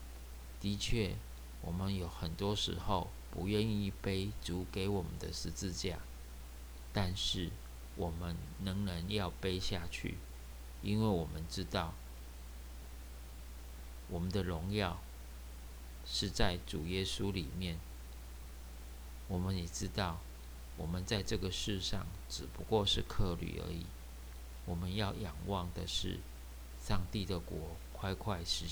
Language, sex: Chinese, male